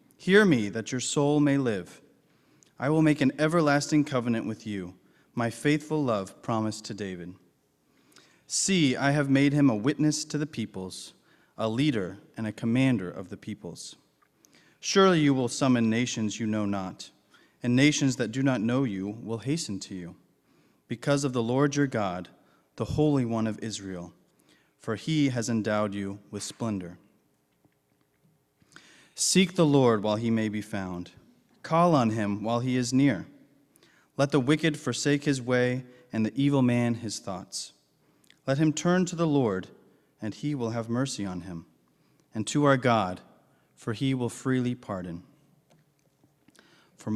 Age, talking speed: 30-49, 160 wpm